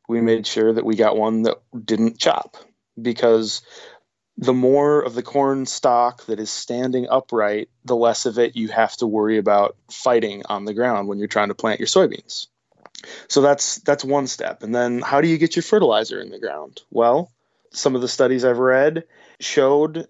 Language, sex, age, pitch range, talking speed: English, male, 20-39, 115-135 Hz, 195 wpm